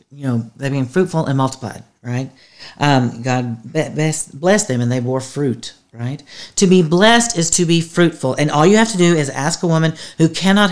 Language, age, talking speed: English, 40-59, 205 wpm